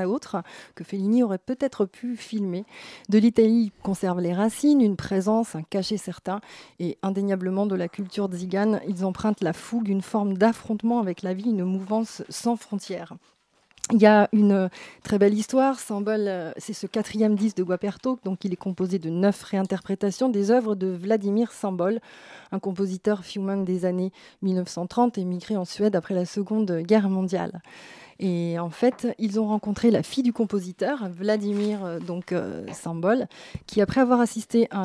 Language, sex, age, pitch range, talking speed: French, female, 30-49, 190-220 Hz, 165 wpm